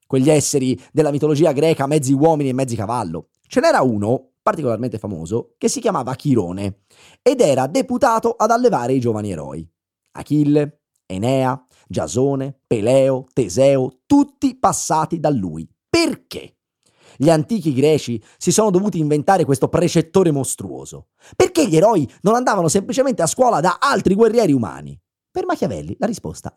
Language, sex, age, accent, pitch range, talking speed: Italian, male, 30-49, native, 120-195 Hz, 140 wpm